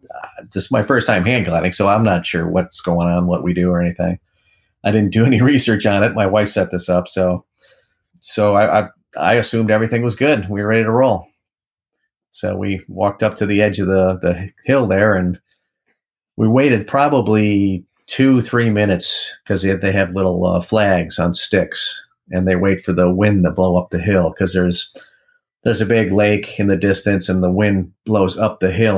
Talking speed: 210 wpm